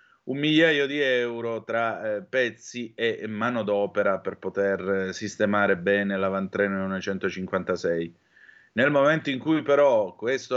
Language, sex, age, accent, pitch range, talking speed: Italian, male, 30-49, native, 95-120 Hz, 120 wpm